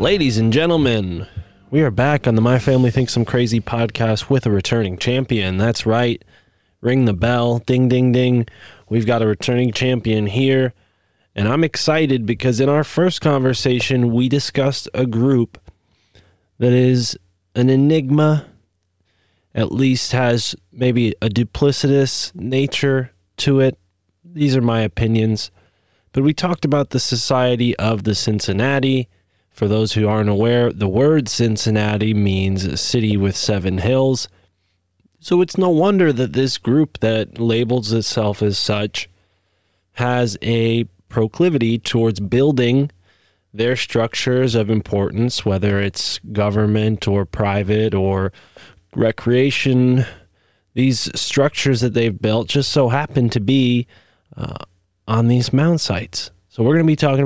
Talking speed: 140 wpm